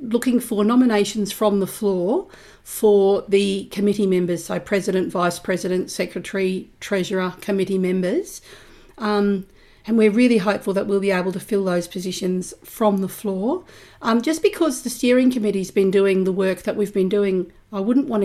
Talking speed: 170 wpm